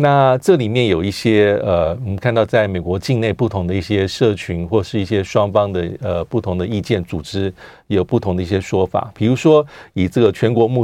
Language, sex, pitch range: Chinese, male, 90-115 Hz